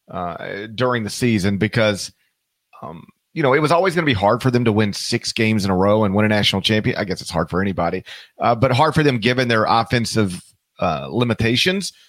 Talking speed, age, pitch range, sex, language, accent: 225 wpm, 40-59, 105-130 Hz, male, English, American